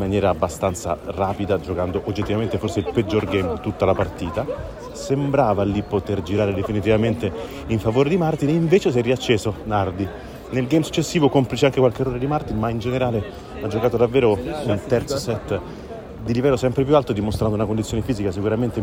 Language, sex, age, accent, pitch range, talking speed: Italian, male, 30-49, native, 95-120 Hz, 180 wpm